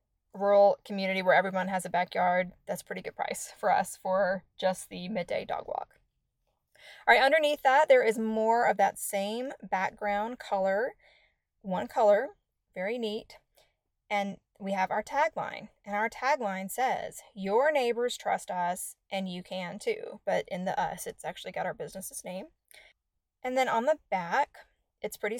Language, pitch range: English, 190-245 Hz